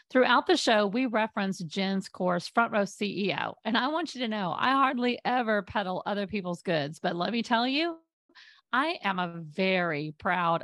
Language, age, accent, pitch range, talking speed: English, 40-59, American, 190-245 Hz, 185 wpm